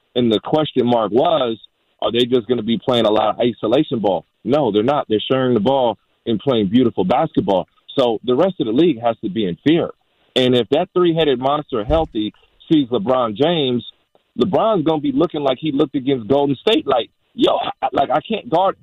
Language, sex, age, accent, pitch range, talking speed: English, male, 30-49, American, 130-175 Hz, 205 wpm